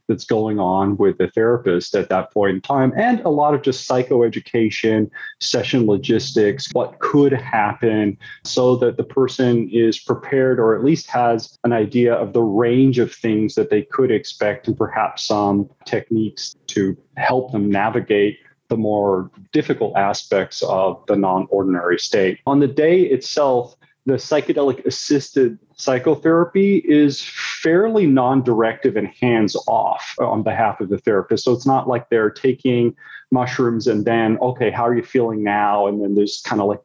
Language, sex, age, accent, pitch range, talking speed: English, male, 30-49, American, 105-135 Hz, 160 wpm